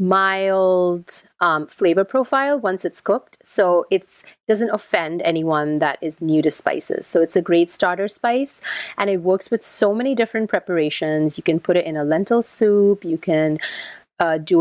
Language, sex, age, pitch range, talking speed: English, female, 30-49, 165-220 Hz, 175 wpm